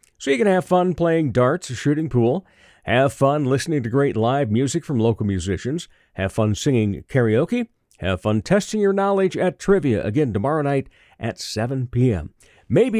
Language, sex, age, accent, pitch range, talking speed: English, male, 50-69, American, 115-165 Hz, 170 wpm